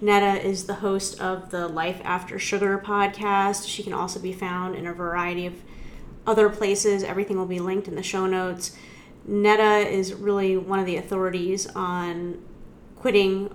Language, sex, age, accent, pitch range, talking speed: English, female, 30-49, American, 185-205 Hz, 170 wpm